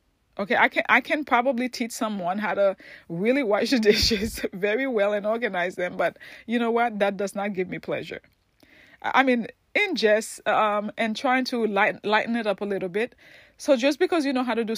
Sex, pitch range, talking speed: female, 195-250 Hz, 205 wpm